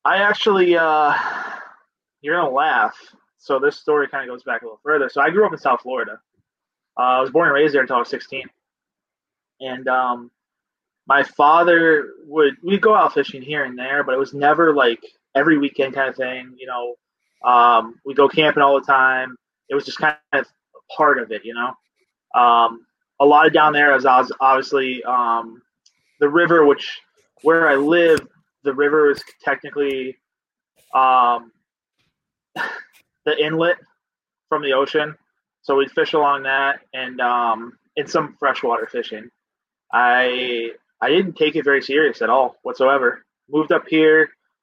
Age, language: 20-39, English